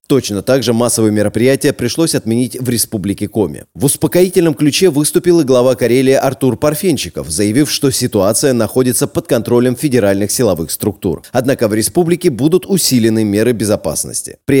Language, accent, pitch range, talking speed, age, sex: Russian, native, 110-140 Hz, 150 wpm, 30-49, male